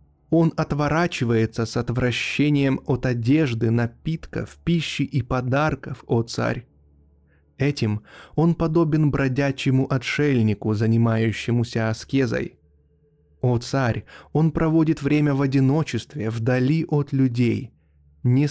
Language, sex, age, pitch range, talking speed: Russian, male, 20-39, 110-145 Hz, 95 wpm